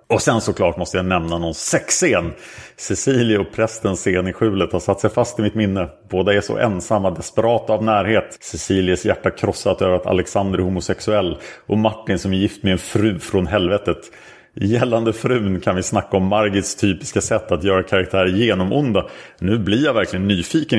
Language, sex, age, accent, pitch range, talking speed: Swedish, male, 30-49, Norwegian, 90-110 Hz, 190 wpm